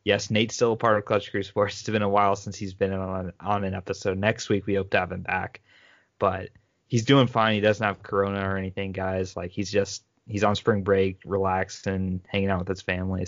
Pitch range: 95-105 Hz